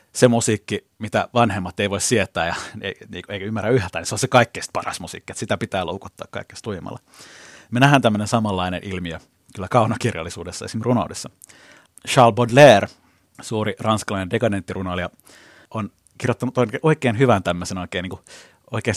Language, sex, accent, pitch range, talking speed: Finnish, male, native, 100-130 Hz, 145 wpm